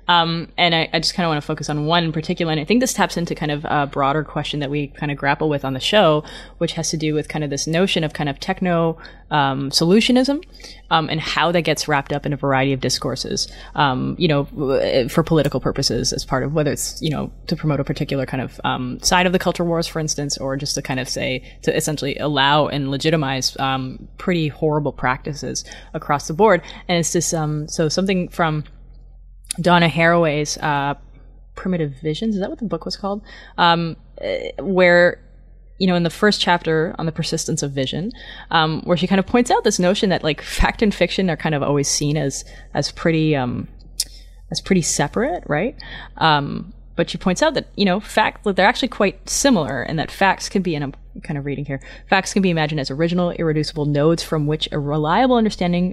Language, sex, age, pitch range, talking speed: English, female, 20-39, 145-180 Hz, 215 wpm